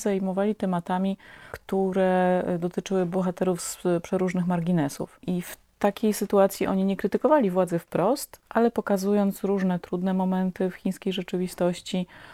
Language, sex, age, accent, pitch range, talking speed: Polish, female, 30-49, native, 170-195 Hz, 120 wpm